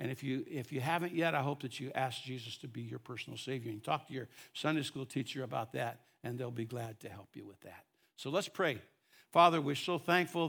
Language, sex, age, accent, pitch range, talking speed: English, male, 60-79, American, 125-150 Hz, 245 wpm